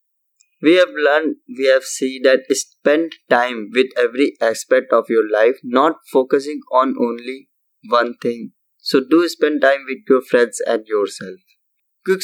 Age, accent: 20-39, native